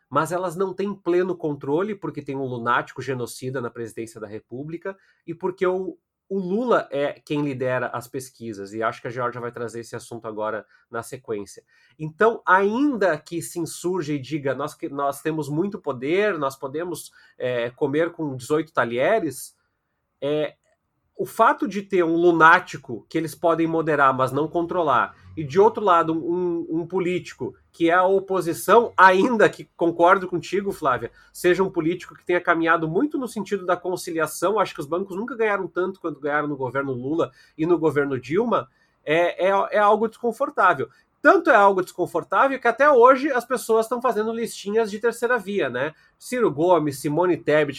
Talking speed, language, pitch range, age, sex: 170 wpm, Portuguese, 150-200 Hz, 30-49, male